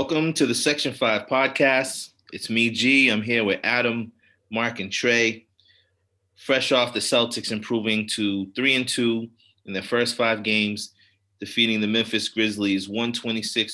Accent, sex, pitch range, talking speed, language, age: American, male, 95-115 Hz, 155 wpm, English, 30-49